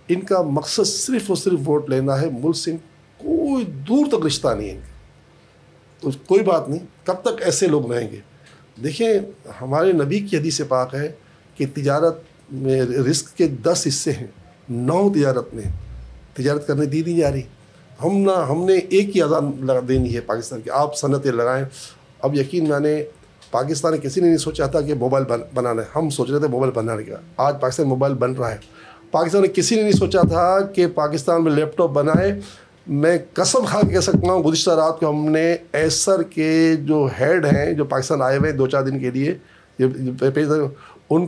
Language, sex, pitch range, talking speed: Urdu, male, 130-165 Hz, 195 wpm